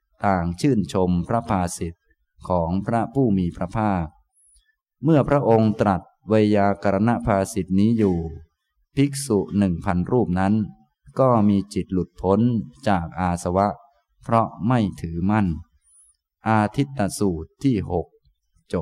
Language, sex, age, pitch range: Thai, male, 20-39, 90-115 Hz